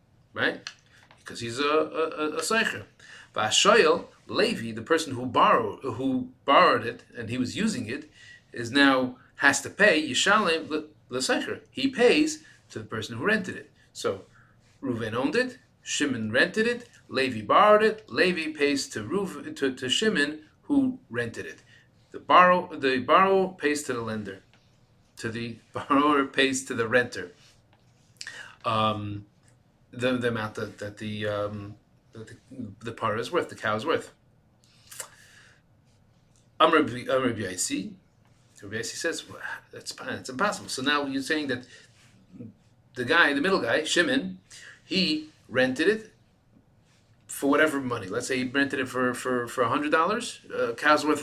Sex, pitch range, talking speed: male, 120-155 Hz, 155 wpm